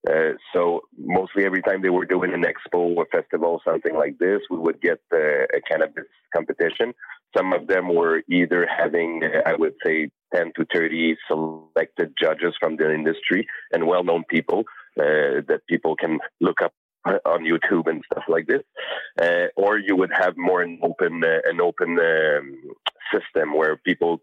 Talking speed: 175 wpm